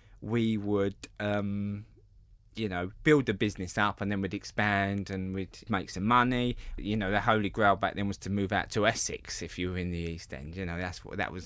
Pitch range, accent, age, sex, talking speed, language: 100-125 Hz, British, 20-39, male, 230 wpm, English